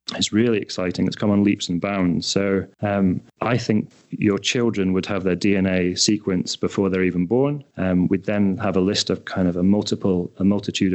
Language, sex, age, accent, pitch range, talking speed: English, male, 30-49, British, 95-105 Hz, 205 wpm